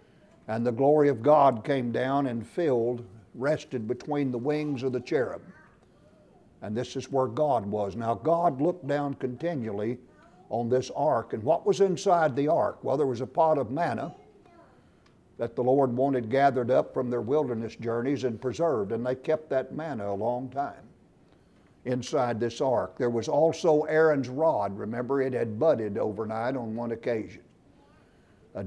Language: English